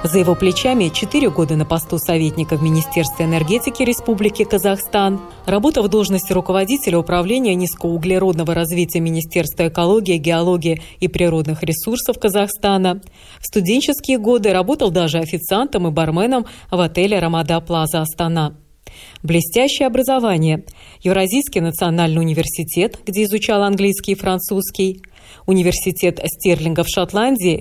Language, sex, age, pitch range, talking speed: Russian, female, 20-39, 165-210 Hz, 115 wpm